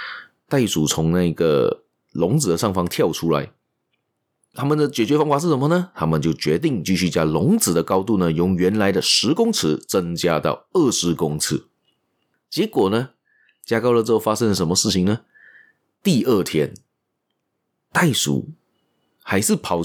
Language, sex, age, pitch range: Chinese, male, 30-49, 95-160 Hz